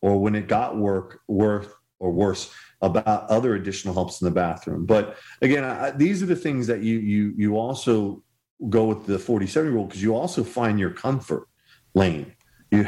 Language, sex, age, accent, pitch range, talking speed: English, male, 40-59, American, 95-115 Hz, 190 wpm